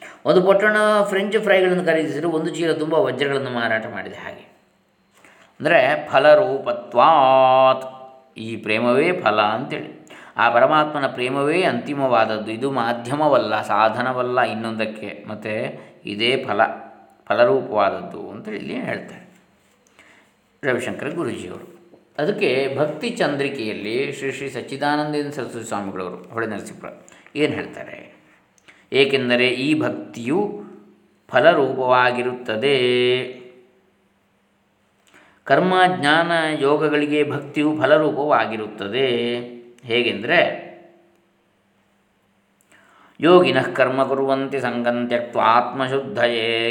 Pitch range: 120-145 Hz